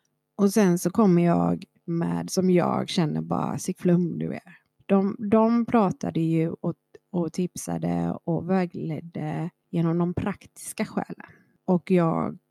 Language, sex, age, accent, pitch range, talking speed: Swedish, female, 30-49, native, 160-190 Hz, 140 wpm